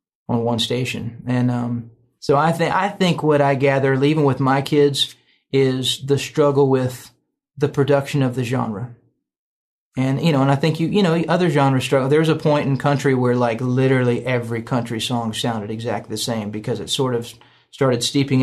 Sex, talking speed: male, 190 wpm